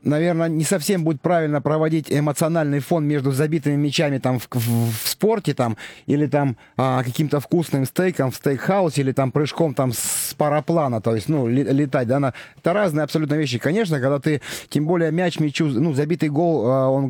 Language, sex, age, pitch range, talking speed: Russian, male, 30-49, 135-160 Hz, 180 wpm